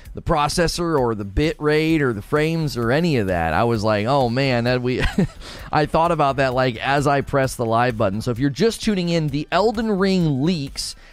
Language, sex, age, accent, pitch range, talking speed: English, male, 30-49, American, 115-150 Hz, 220 wpm